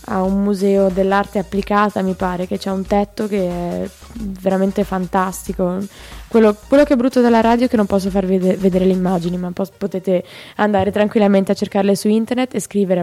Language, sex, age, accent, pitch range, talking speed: Italian, female, 20-39, native, 185-205 Hz, 190 wpm